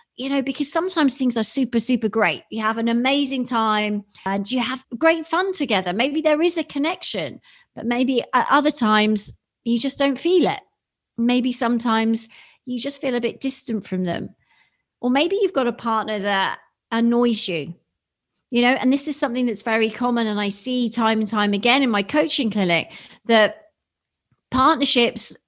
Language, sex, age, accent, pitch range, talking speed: English, female, 40-59, British, 215-275 Hz, 180 wpm